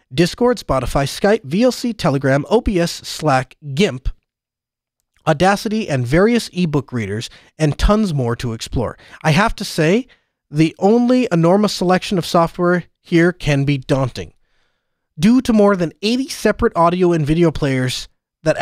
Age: 30-49